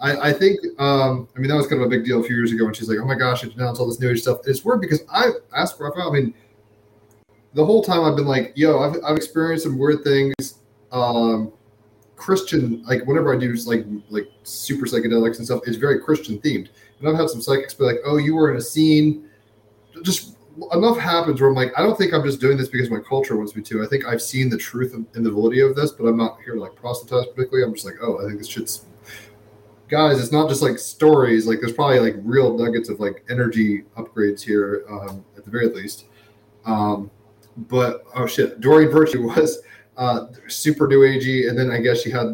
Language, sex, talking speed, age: English, male, 235 wpm, 20-39